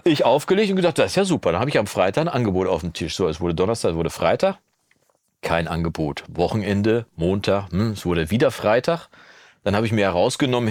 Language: German